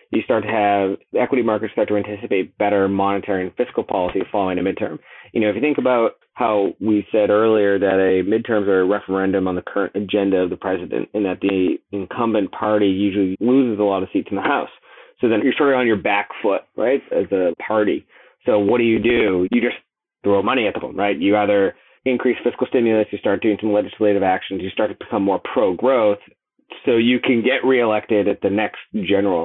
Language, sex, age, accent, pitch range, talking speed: English, male, 30-49, American, 100-115 Hz, 215 wpm